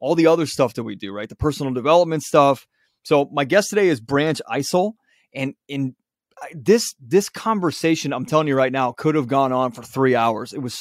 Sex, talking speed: male, 210 wpm